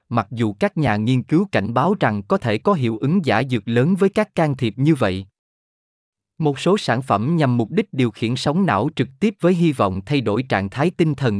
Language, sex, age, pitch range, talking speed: Vietnamese, male, 20-39, 110-155 Hz, 235 wpm